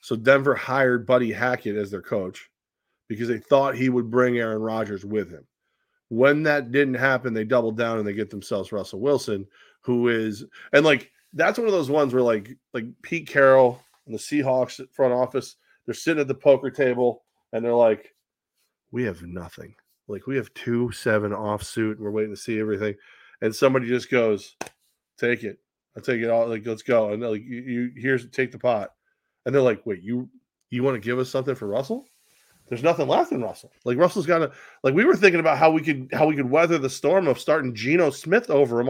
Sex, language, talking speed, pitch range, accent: male, English, 215 wpm, 115-135 Hz, American